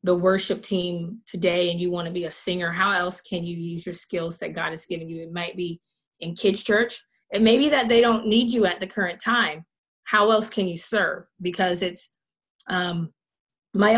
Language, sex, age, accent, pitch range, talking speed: English, female, 20-39, American, 175-205 Hz, 210 wpm